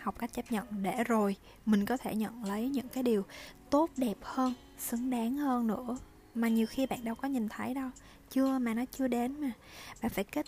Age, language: 20-39, Vietnamese